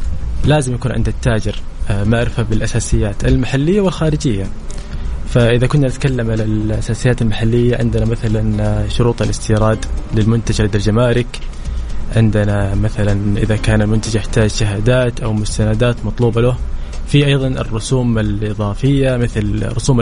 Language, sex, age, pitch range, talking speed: English, male, 20-39, 105-125 Hz, 110 wpm